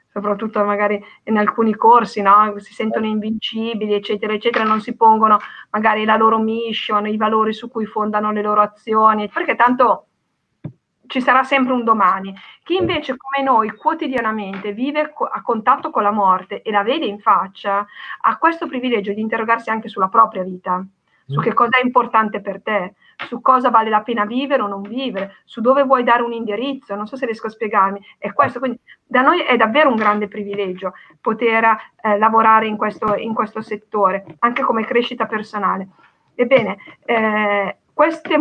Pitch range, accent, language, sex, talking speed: 210-245 Hz, native, Italian, female, 170 wpm